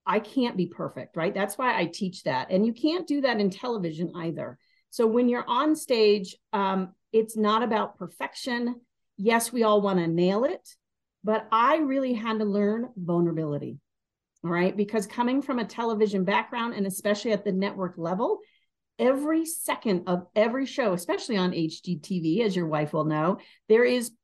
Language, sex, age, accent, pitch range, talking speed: English, female, 40-59, American, 185-235 Hz, 175 wpm